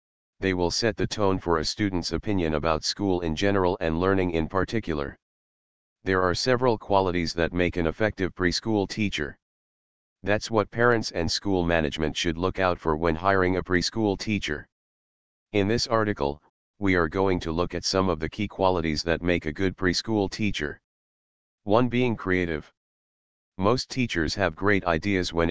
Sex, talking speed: male, 165 wpm